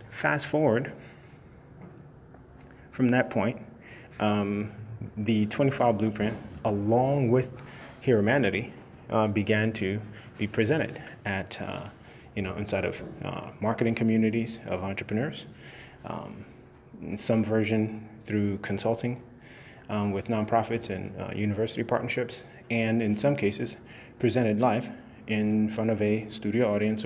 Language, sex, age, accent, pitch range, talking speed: English, male, 30-49, American, 105-125 Hz, 120 wpm